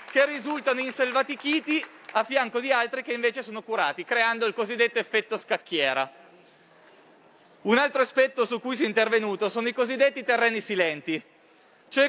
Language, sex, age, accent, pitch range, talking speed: Italian, male, 20-39, native, 210-260 Hz, 150 wpm